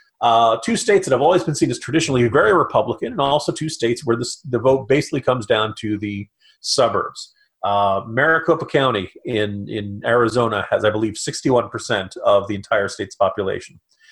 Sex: male